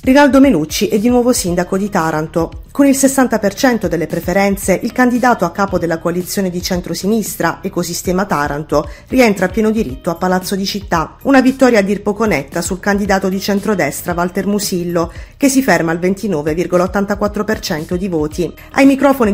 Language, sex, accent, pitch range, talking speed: Italian, female, native, 170-220 Hz, 160 wpm